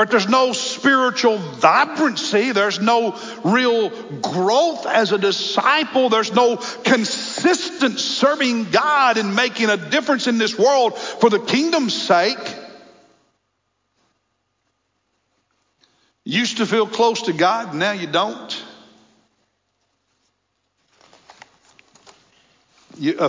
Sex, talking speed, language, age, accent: male, 100 wpm, English, 60-79, American